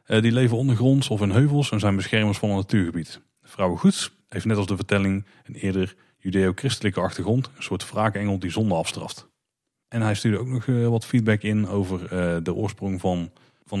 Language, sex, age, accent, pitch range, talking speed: Dutch, male, 30-49, Dutch, 95-125 Hz, 200 wpm